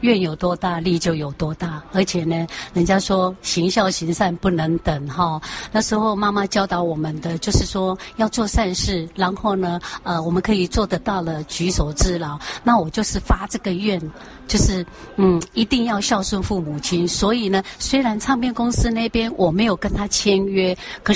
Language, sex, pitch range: Chinese, female, 170-215 Hz